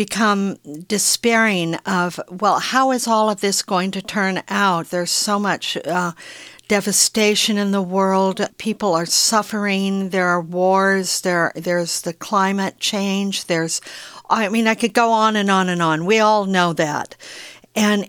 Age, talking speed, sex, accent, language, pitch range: 60-79, 165 wpm, female, American, English, 175-210 Hz